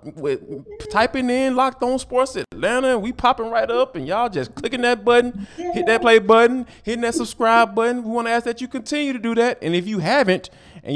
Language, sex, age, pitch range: English, male, 20-39, 170-250 Hz